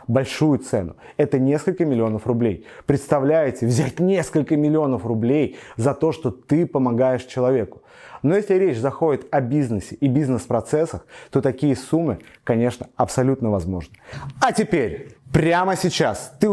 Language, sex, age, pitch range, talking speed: Russian, male, 30-49, 125-155 Hz, 130 wpm